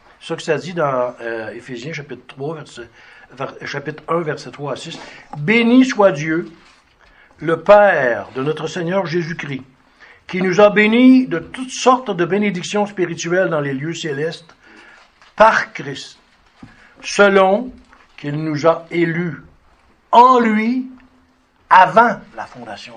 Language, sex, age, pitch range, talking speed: French, male, 60-79, 155-210 Hz, 130 wpm